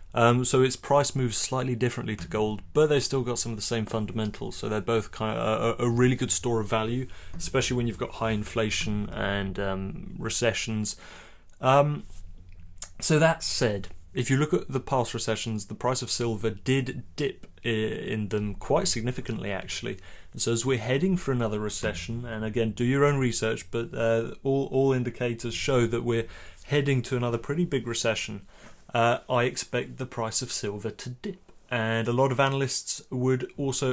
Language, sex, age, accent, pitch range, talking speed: English, male, 30-49, British, 110-130 Hz, 185 wpm